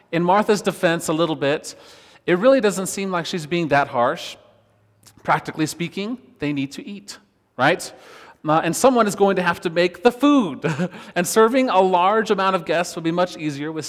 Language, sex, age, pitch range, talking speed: English, male, 30-49, 130-175 Hz, 195 wpm